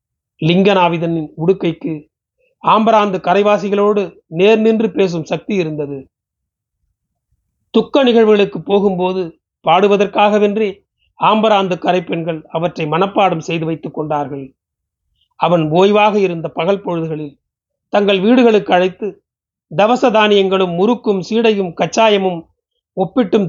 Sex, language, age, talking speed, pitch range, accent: male, Tamil, 40-59, 85 wpm, 165-205 Hz, native